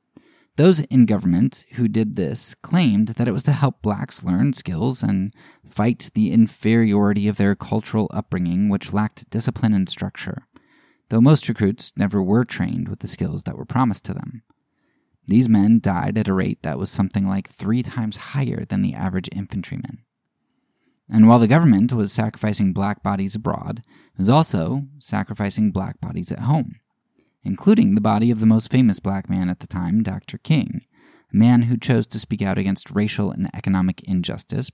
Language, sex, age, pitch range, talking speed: English, male, 20-39, 100-130 Hz, 175 wpm